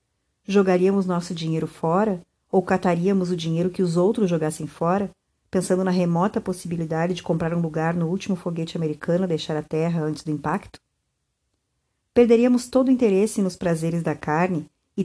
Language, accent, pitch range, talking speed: Portuguese, Brazilian, 165-200 Hz, 165 wpm